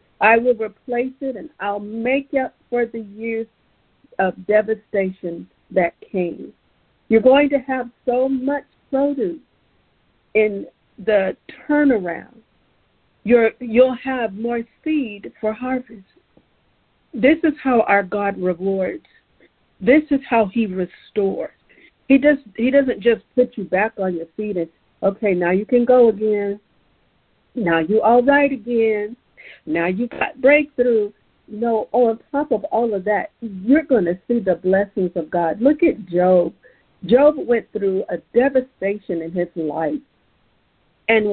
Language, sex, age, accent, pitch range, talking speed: English, female, 50-69, American, 205-255 Hz, 140 wpm